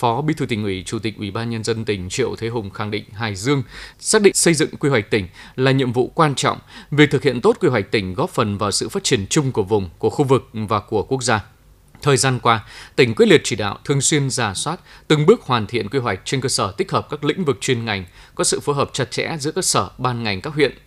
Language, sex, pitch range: Vietnamese, male, 110-140 Hz